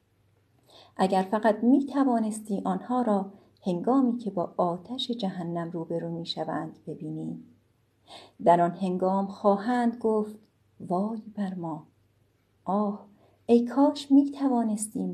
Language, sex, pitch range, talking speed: Persian, female, 170-235 Hz, 110 wpm